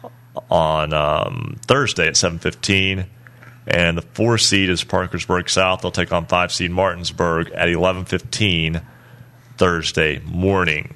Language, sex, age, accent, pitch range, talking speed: English, male, 30-49, American, 90-110 Hz, 120 wpm